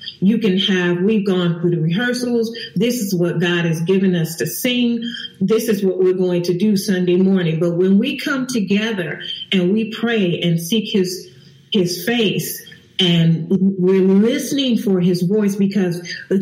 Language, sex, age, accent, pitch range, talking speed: English, female, 40-59, American, 180-230 Hz, 170 wpm